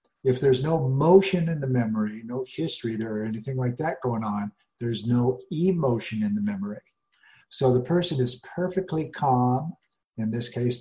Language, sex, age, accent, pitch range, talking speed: English, male, 50-69, American, 115-135 Hz, 170 wpm